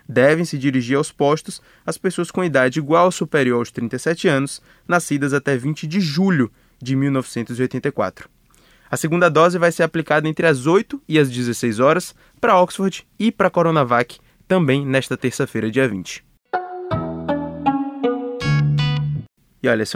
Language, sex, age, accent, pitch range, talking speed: Portuguese, male, 20-39, Brazilian, 140-180 Hz, 145 wpm